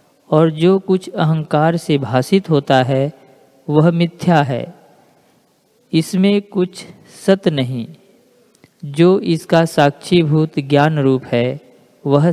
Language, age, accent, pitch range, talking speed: Hindi, 50-69, native, 145-175 Hz, 105 wpm